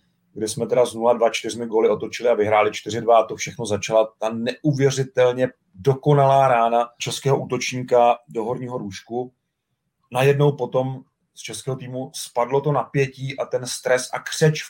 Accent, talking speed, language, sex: native, 155 wpm, Czech, male